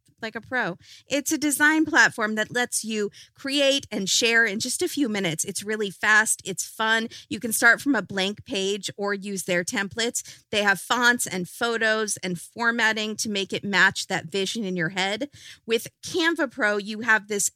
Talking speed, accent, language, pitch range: 190 wpm, American, English, 180-240 Hz